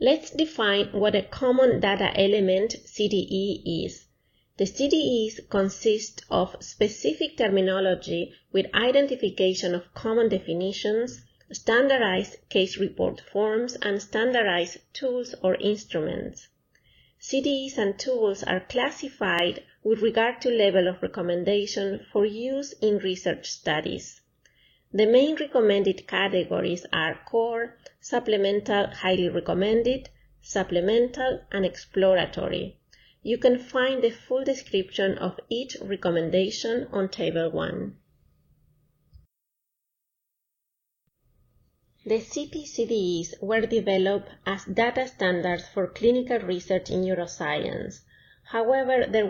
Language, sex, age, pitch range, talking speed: English, female, 30-49, 185-240 Hz, 100 wpm